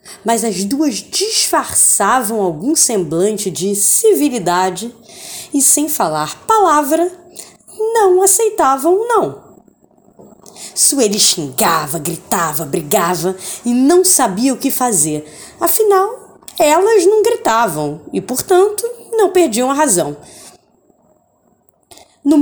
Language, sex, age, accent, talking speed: Portuguese, female, 20-39, Brazilian, 100 wpm